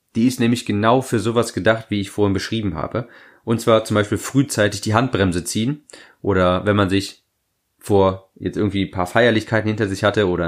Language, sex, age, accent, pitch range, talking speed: German, male, 30-49, German, 100-120 Hz, 195 wpm